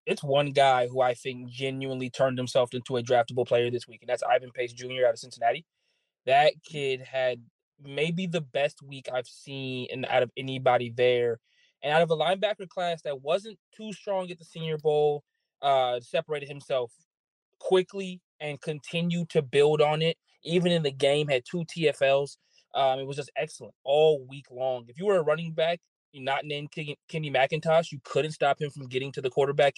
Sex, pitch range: male, 130-155 Hz